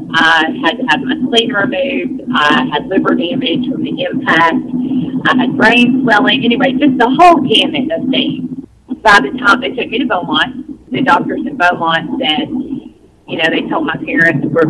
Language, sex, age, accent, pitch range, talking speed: English, female, 40-59, American, 215-285 Hz, 185 wpm